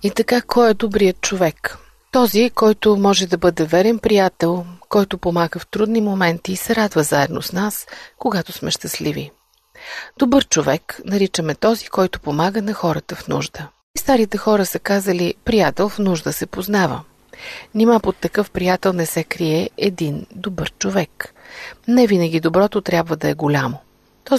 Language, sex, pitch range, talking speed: Bulgarian, female, 175-225 Hz, 160 wpm